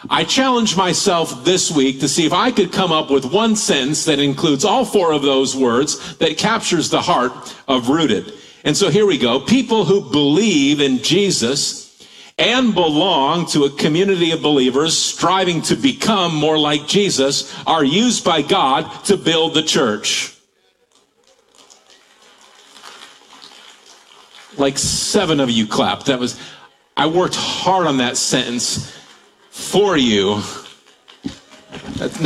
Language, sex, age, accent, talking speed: English, male, 50-69, American, 140 wpm